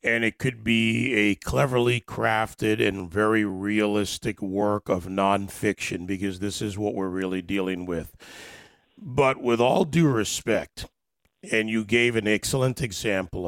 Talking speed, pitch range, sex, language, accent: 140 wpm, 100-120 Hz, male, English, American